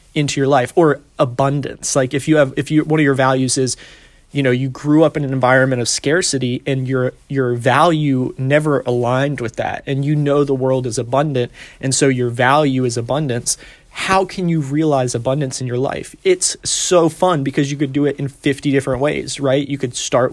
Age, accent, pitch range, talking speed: 30-49, American, 130-150 Hz, 210 wpm